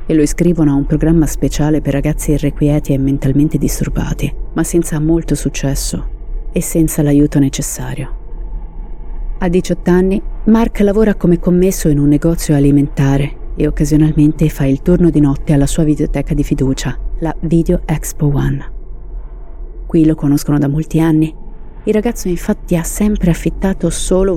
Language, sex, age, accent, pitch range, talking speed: Italian, female, 30-49, native, 140-170 Hz, 150 wpm